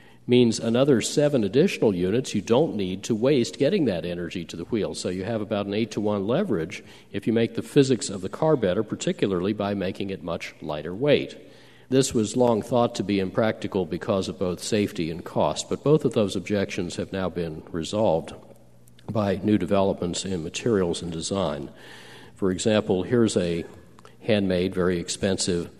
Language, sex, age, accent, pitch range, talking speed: English, male, 50-69, American, 90-115 Hz, 175 wpm